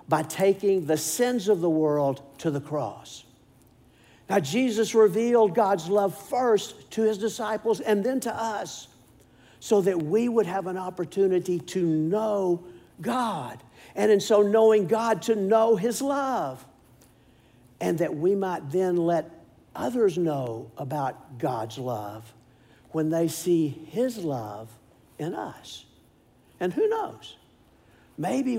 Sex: male